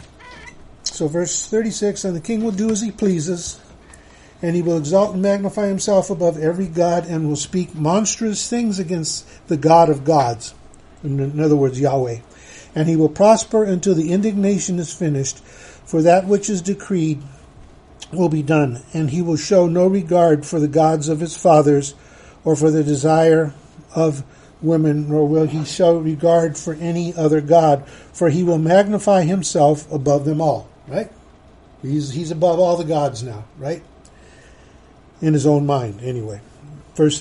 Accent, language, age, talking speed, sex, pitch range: American, English, 50-69, 165 wpm, male, 150-180 Hz